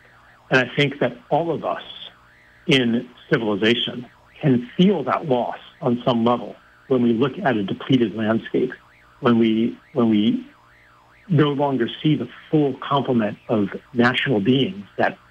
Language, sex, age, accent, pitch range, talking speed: English, male, 60-79, American, 100-145 Hz, 145 wpm